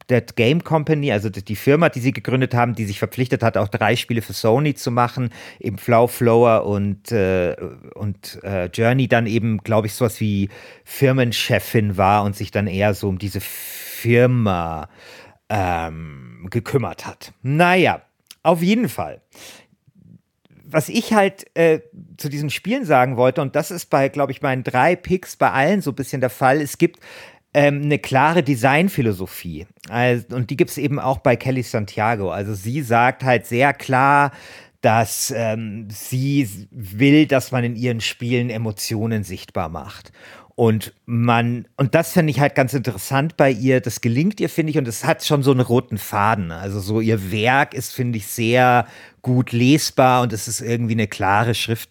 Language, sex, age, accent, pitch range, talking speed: German, male, 50-69, German, 110-135 Hz, 170 wpm